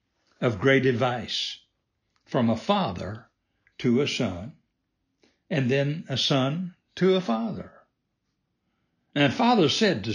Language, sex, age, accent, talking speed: English, male, 60-79, American, 125 wpm